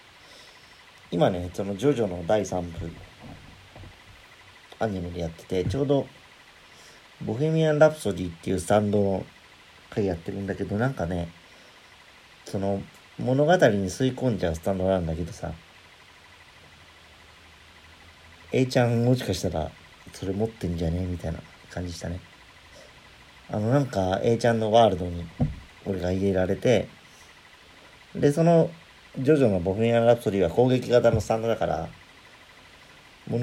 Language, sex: Japanese, male